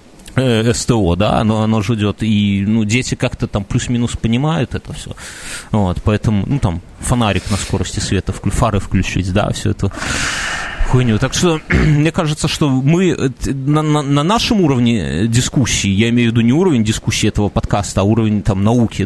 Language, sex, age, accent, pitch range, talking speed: Russian, male, 30-49, native, 105-140 Hz, 170 wpm